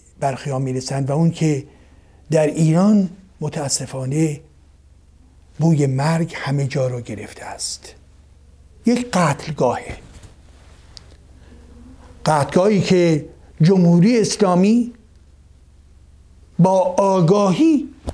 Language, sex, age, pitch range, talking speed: Persian, male, 50-69, 125-180 Hz, 75 wpm